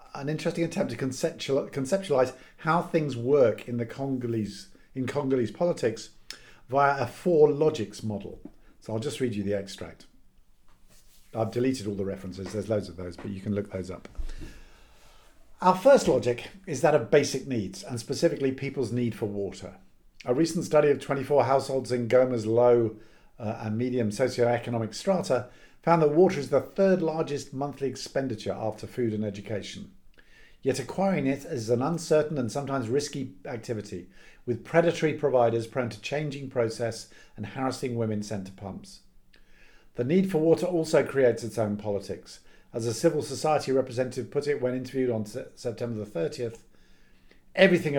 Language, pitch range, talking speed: English, 110-145 Hz, 160 wpm